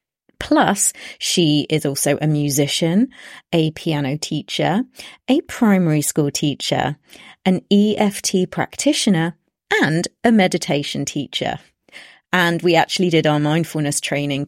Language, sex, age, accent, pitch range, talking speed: English, female, 30-49, British, 145-190 Hz, 110 wpm